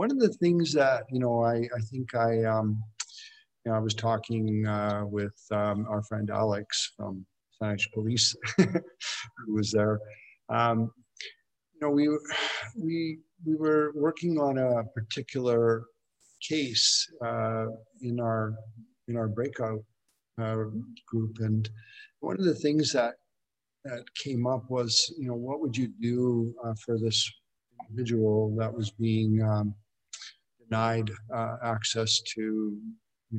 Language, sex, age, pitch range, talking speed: English, male, 50-69, 110-125 Hz, 140 wpm